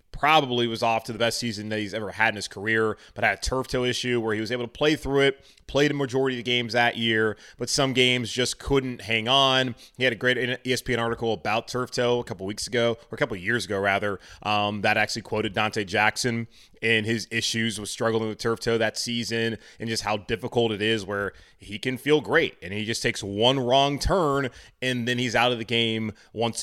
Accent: American